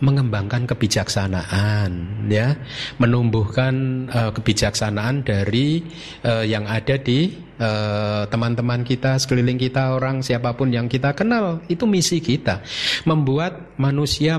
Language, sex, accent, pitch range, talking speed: Indonesian, male, native, 100-135 Hz, 105 wpm